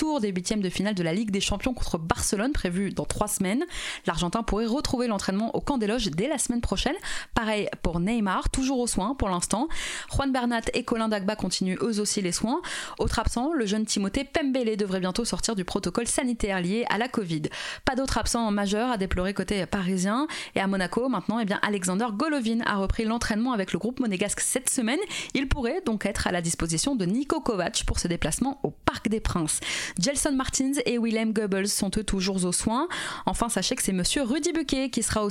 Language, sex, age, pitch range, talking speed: French, female, 20-39, 195-270 Hz, 205 wpm